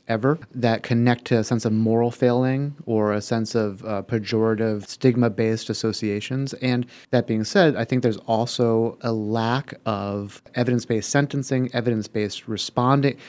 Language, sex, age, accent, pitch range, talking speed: English, male, 30-49, American, 110-130 Hz, 145 wpm